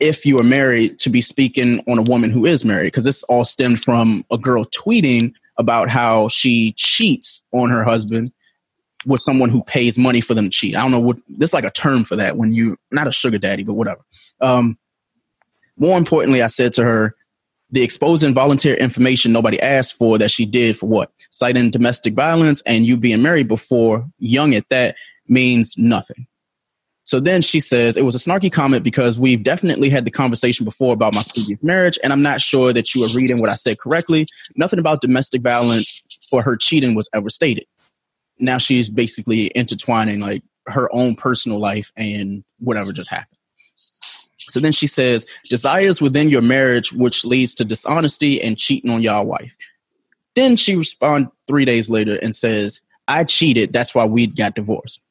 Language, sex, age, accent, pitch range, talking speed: English, male, 20-39, American, 115-135 Hz, 190 wpm